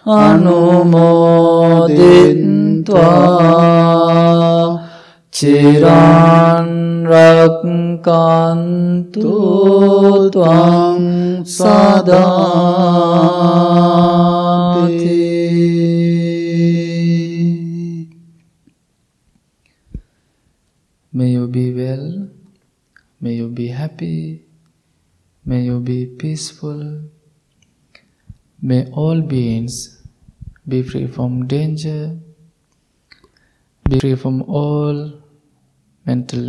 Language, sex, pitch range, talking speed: English, male, 125-170 Hz, 50 wpm